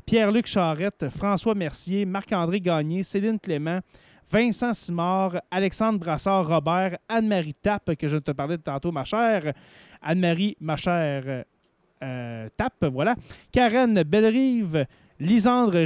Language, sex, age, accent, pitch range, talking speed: French, male, 30-49, Canadian, 165-210 Hz, 115 wpm